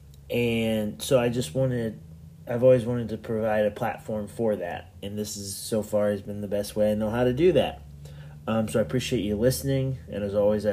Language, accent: English, American